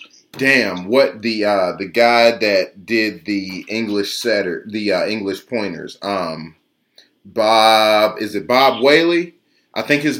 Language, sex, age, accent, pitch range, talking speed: English, male, 30-49, American, 115-175 Hz, 140 wpm